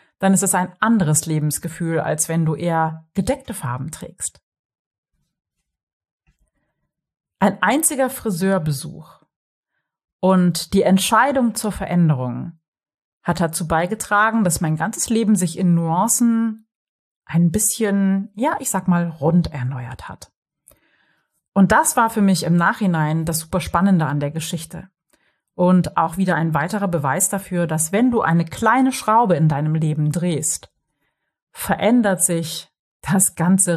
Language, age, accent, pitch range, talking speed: German, 30-49, German, 160-205 Hz, 130 wpm